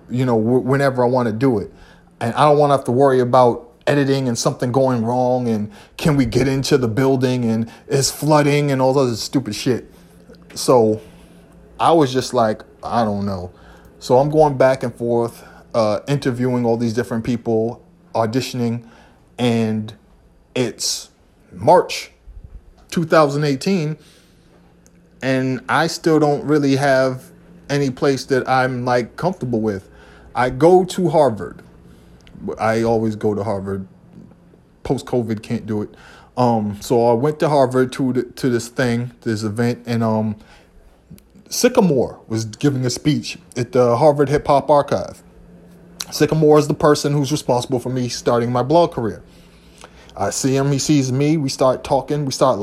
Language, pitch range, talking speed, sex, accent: English, 115-145 Hz, 155 wpm, male, American